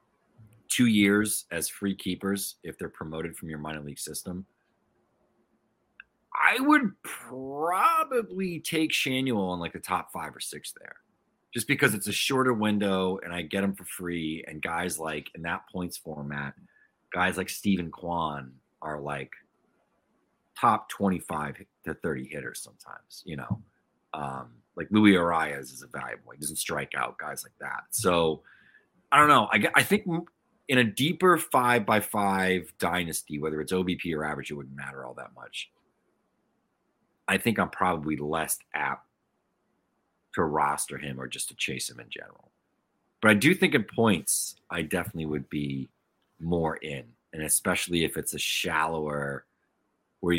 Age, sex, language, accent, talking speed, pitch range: 30-49, male, English, American, 160 wpm, 75-105 Hz